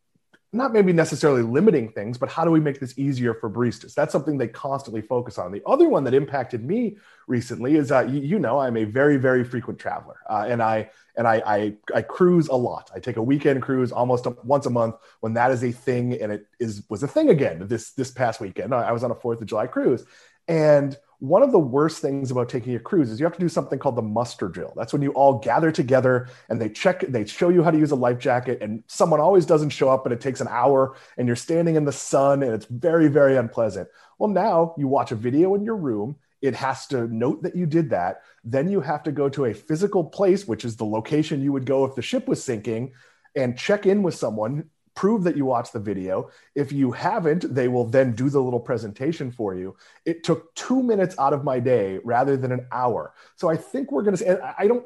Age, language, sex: 30-49, English, male